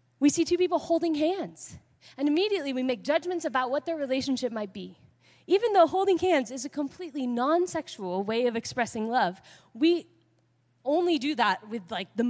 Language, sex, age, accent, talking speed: English, female, 10-29, American, 175 wpm